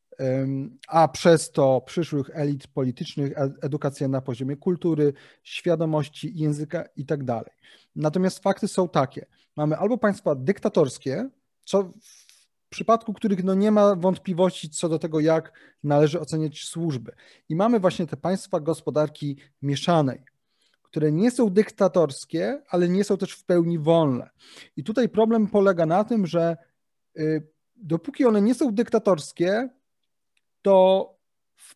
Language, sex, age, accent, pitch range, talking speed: Polish, male, 30-49, native, 150-195 Hz, 130 wpm